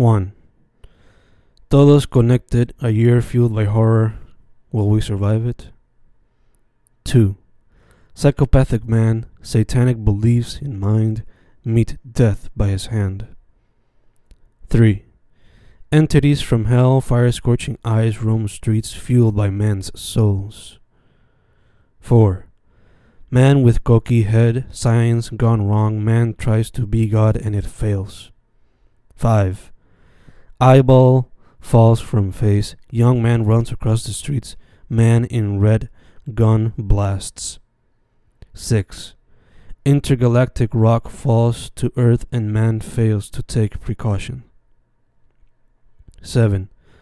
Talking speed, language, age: 105 wpm, Spanish, 20-39